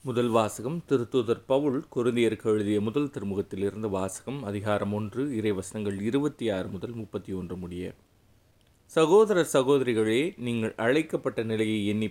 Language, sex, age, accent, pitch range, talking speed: Tamil, male, 30-49, native, 105-130 Hz, 120 wpm